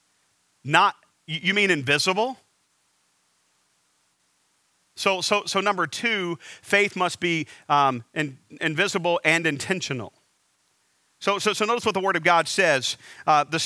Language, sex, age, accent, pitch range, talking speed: English, male, 40-59, American, 150-200 Hz, 125 wpm